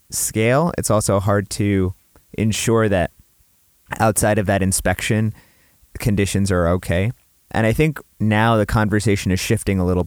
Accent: American